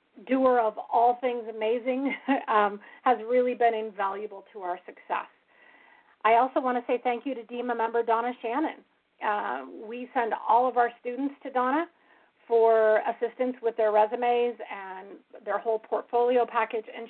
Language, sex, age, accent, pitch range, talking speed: English, female, 40-59, American, 215-245 Hz, 160 wpm